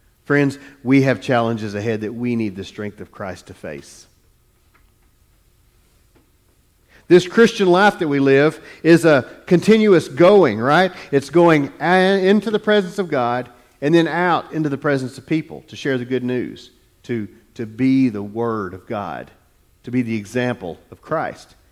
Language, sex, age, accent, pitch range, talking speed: English, male, 40-59, American, 120-185 Hz, 160 wpm